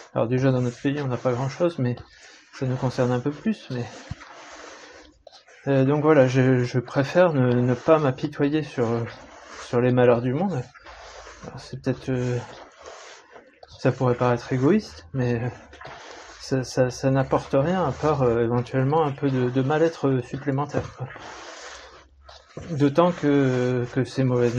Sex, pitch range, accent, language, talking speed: male, 120-135 Hz, French, French, 155 wpm